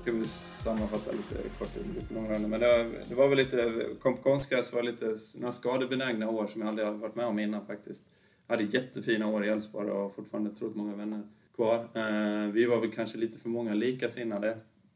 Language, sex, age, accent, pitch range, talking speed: Swedish, male, 30-49, native, 105-115 Hz, 210 wpm